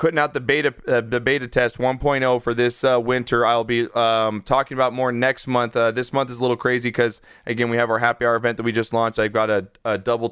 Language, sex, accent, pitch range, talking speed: English, male, American, 115-130 Hz, 260 wpm